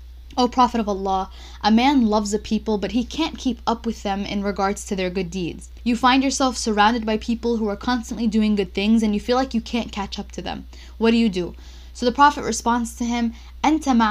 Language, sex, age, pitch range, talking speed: English, female, 10-29, 205-240 Hz, 240 wpm